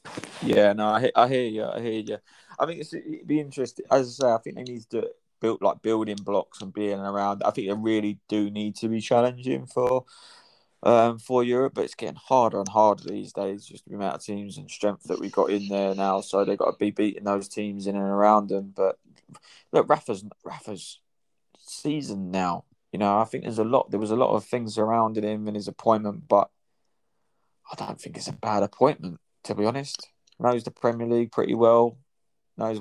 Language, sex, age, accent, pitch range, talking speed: English, male, 20-39, British, 100-115 Hz, 220 wpm